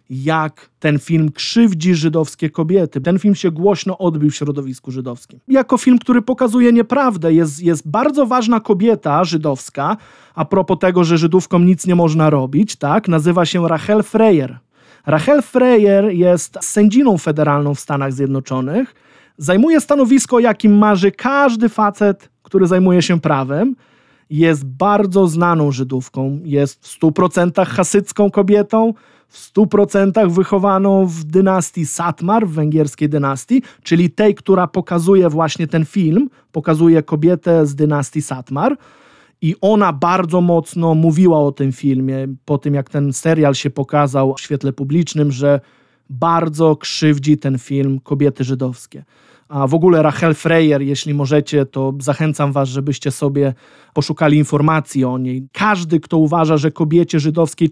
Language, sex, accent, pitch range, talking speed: Polish, male, native, 145-190 Hz, 140 wpm